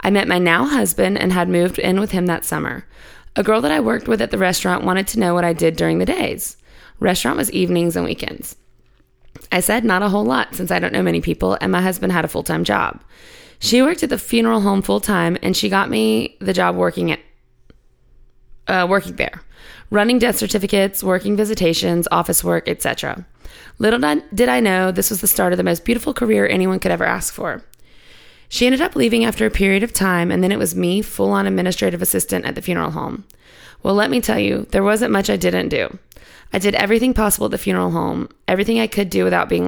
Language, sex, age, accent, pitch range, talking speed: English, female, 20-39, American, 125-210 Hz, 220 wpm